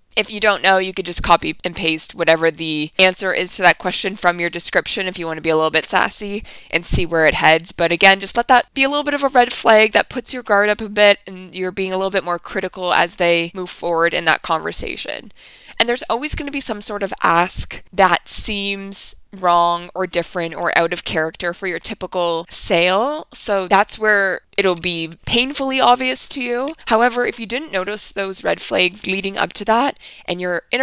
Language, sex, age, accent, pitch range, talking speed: English, female, 20-39, American, 175-215 Hz, 225 wpm